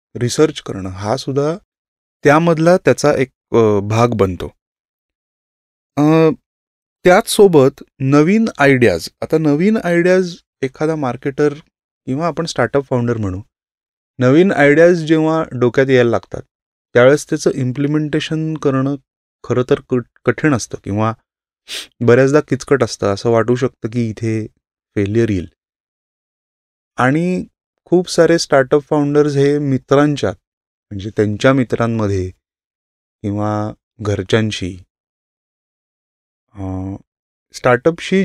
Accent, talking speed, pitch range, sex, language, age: native, 70 wpm, 115-160 Hz, male, Marathi, 30-49